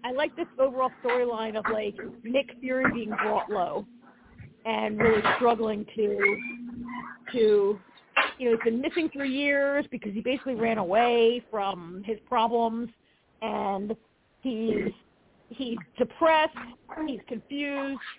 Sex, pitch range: female, 215-270 Hz